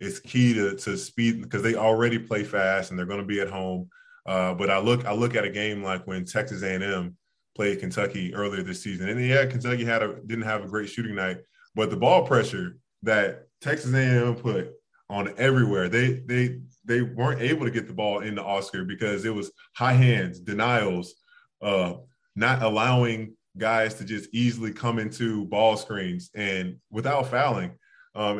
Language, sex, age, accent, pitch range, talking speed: English, male, 20-39, American, 105-125 Hz, 195 wpm